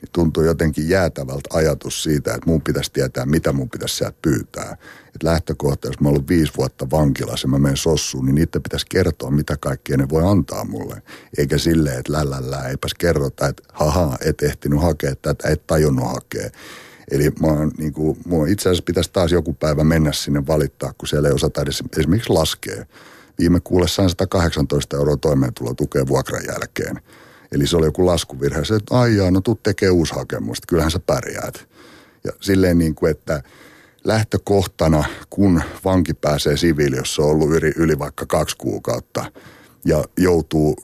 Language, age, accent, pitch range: Finnish, 60-79, native, 75-90 Hz